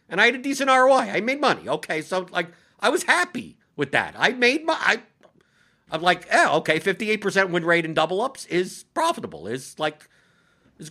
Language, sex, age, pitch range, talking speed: English, male, 50-69, 160-220 Hz, 200 wpm